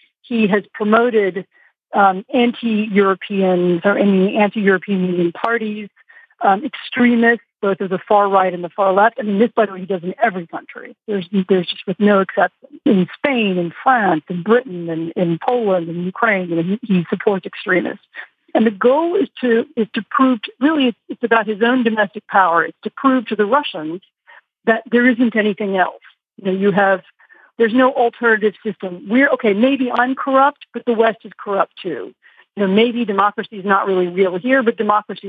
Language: English